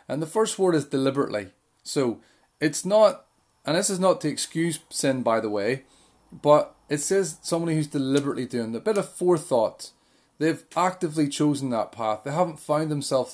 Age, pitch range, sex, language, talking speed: 30-49, 125-160 Hz, male, English, 180 wpm